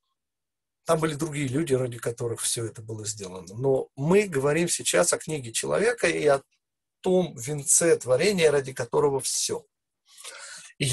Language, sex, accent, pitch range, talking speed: Russian, male, native, 130-175 Hz, 145 wpm